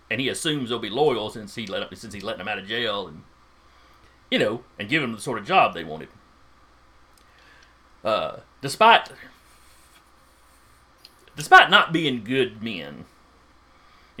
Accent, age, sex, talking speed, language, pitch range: American, 30-49, male, 155 wpm, English, 95-135 Hz